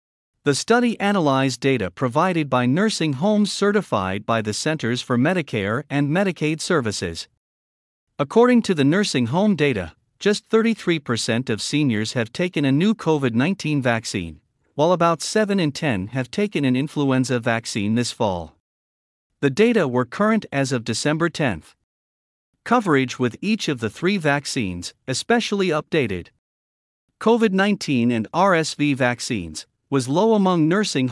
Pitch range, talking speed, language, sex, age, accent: 115-170 Hz, 140 wpm, English, male, 50-69, American